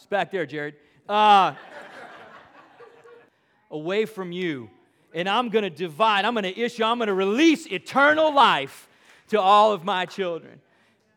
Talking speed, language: 150 wpm, English